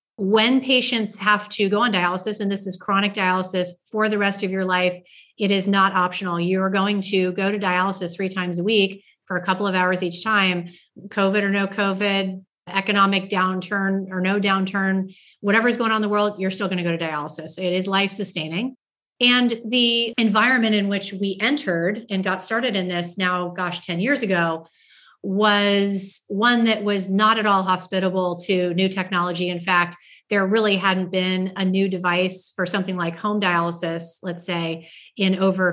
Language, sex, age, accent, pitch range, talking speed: English, female, 30-49, American, 180-205 Hz, 185 wpm